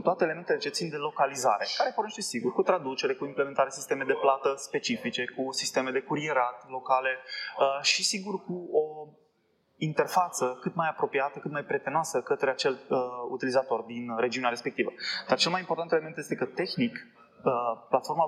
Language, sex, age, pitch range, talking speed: Romanian, male, 20-39, 125-170 Hz, 165 wpm